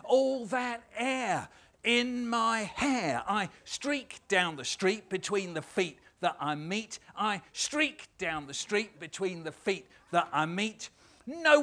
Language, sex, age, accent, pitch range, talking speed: English, male, 50-69, British, 180-245 Hz, 150 wpm